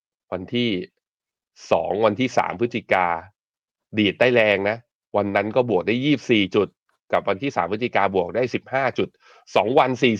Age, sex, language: 20-39, male, Thai